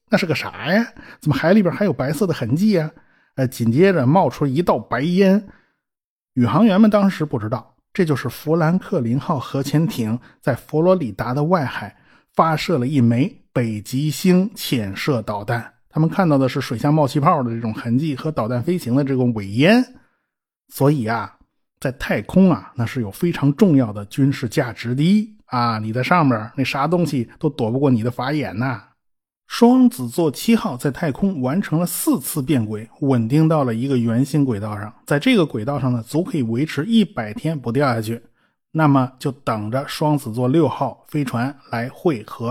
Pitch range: 120-170 Hz